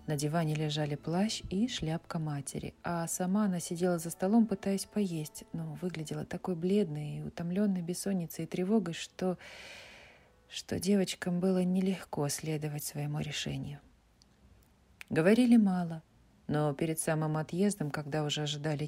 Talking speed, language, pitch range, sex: 130 wpm, Russian, 150-195 Hz, female